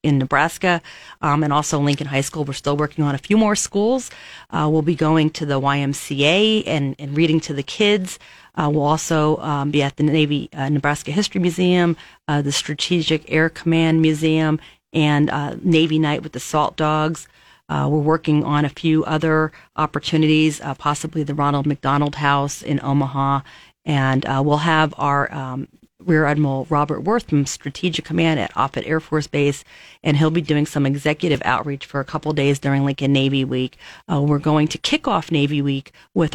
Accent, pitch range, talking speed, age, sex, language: American, 145-160 Hz, 185 wpm, 40-59, female, English